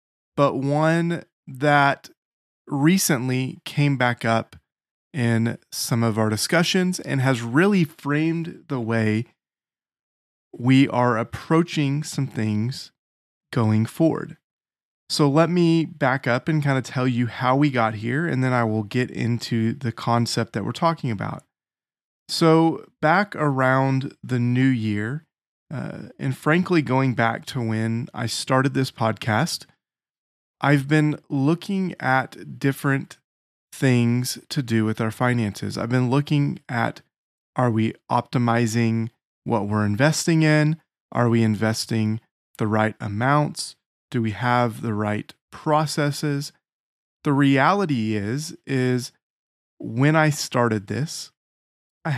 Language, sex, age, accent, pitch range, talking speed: English, male, 30-49, American, 115-150 Hz, 130 wpm